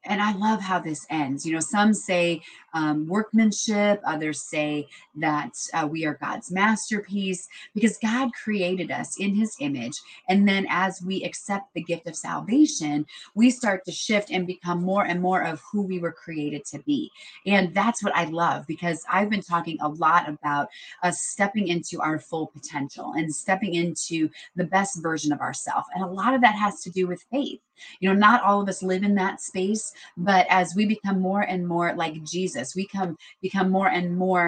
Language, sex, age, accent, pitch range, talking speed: English, female, 30-49, American, 160-205 Hz, 195 wpm